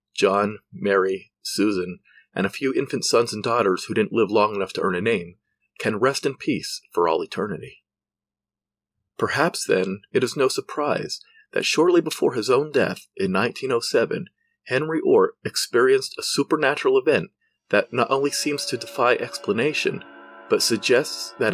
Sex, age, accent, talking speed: male, 40-59, American, 155 wpm